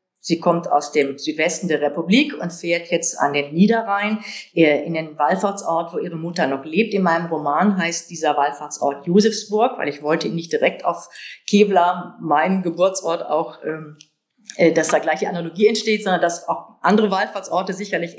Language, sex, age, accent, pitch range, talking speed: German, female, 50-69, German, 170-210 Hz, 160 wpm